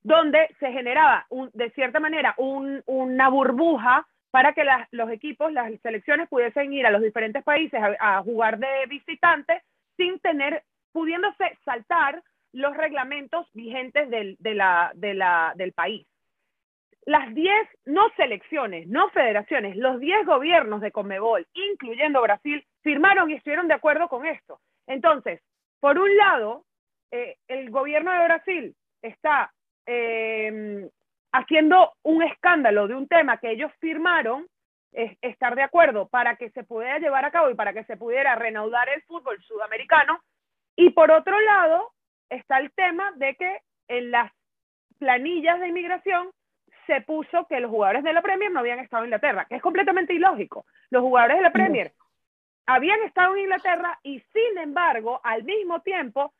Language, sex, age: Spanish, female, 30-49